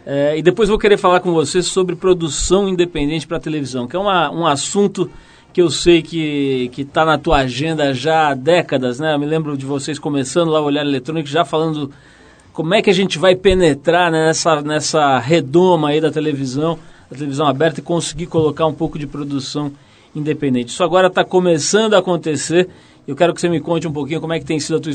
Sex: male